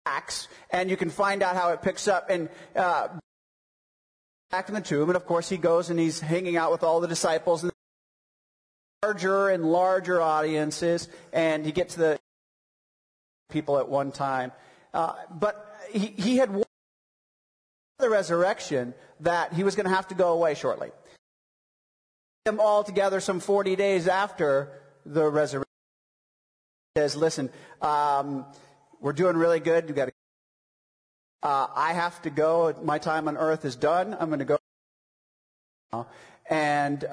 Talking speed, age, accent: 155 wpm, 30-49, American